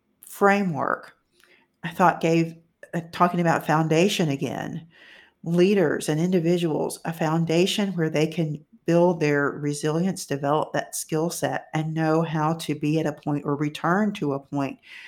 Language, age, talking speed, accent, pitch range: English, 50-69, 145 wpm, American, 150-180 Hz